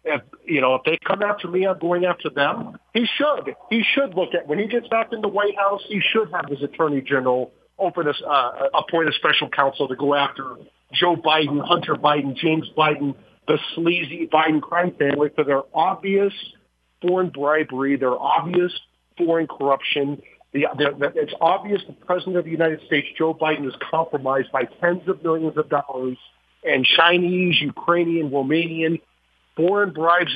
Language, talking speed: English, 175 wpm